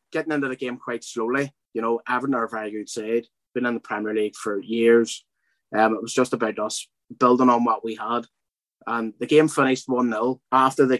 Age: 20-39